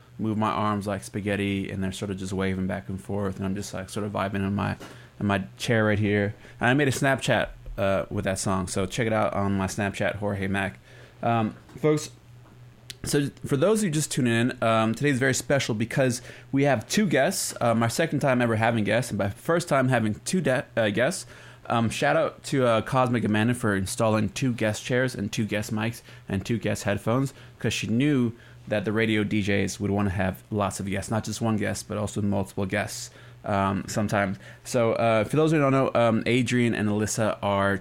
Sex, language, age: male, English, 20-39